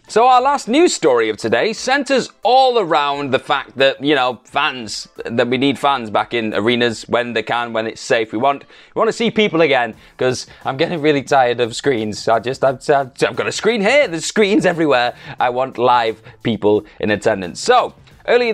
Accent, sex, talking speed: British, male, 205 wpm